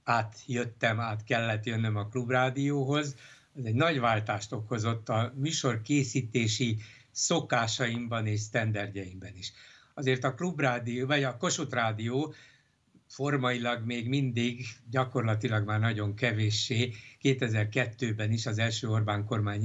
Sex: male